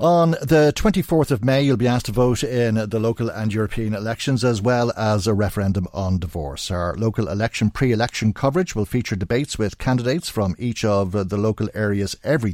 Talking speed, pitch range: 190 wpm, 100-130 Hz